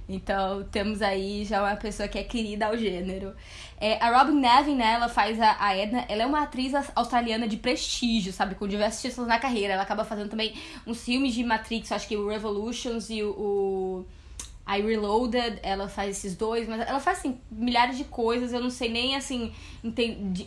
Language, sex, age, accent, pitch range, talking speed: Portuguese, female, 10-29, Brazilian, 205-250 Hz, 200 wpm